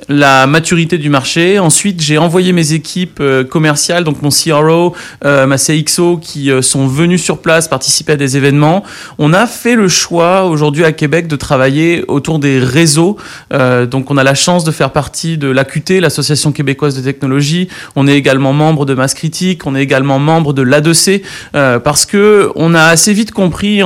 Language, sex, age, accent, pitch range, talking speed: French, male, 30-49, French, 140-180 Hz, 185 wpm